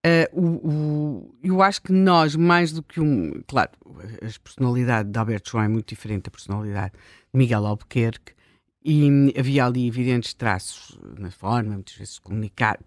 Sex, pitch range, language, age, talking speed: female, 120-170 Hz, Portuguese, 50-69, 170 wpm